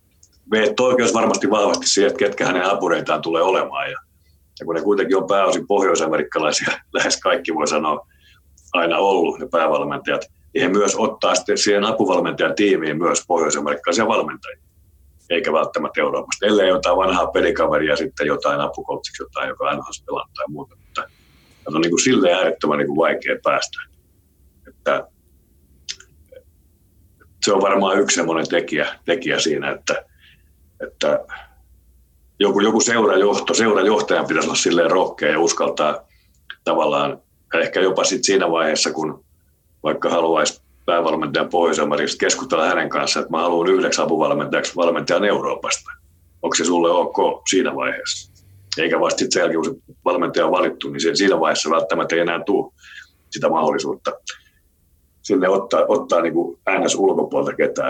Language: Finnish